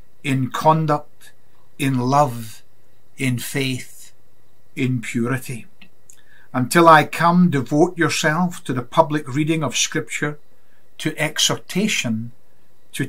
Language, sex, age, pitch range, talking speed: English, male, 60-79, 125-155 Hz, 100 wpm